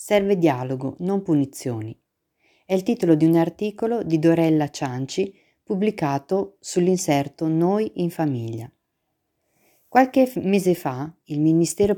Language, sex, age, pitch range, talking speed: Italian, female, 40-59, 140-190 Hz, 115 wpm